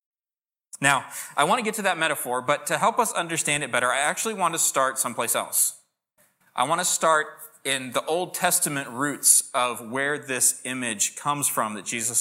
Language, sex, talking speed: English, male, 190 wpm